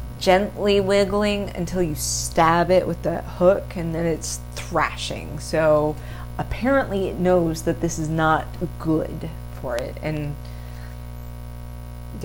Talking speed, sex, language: 125 wpm, female, English